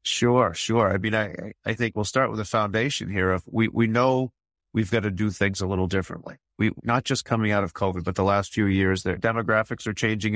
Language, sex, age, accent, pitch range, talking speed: English, male, 30-49, American, 95-115 Hz, 240 wpm